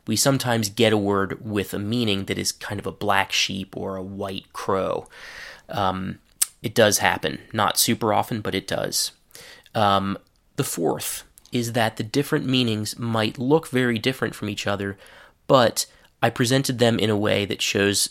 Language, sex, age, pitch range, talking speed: English, male, 20-39, 100-125 Hz, 175 wpm